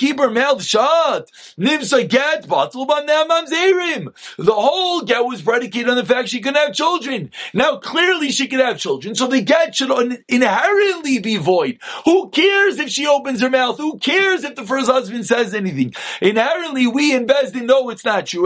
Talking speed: 180 wpm